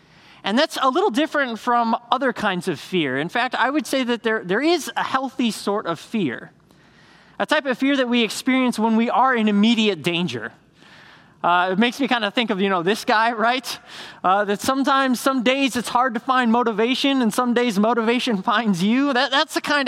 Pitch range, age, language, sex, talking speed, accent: 205-255 Hz, 20-39, English, male, 210 wpm, American